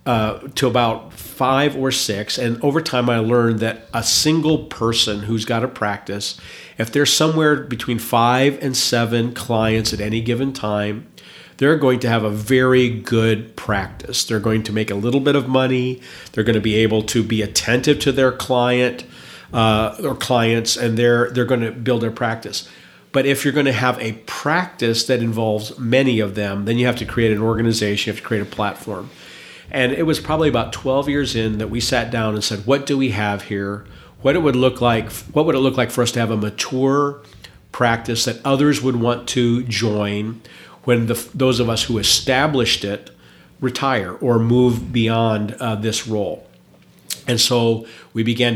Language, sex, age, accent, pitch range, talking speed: English, male, 50-69, American, 110-130 Hz, 195 wpm